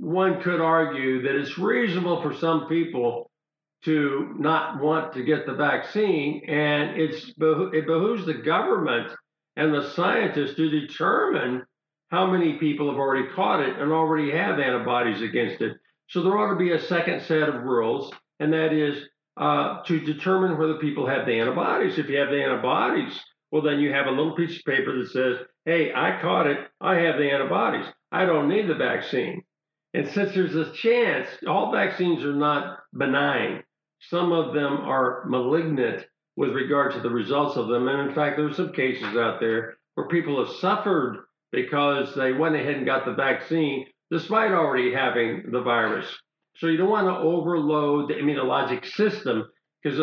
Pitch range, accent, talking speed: 135-165 Hz, American, 180 wpm